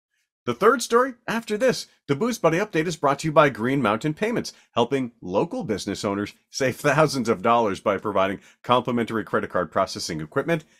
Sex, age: male, 40-59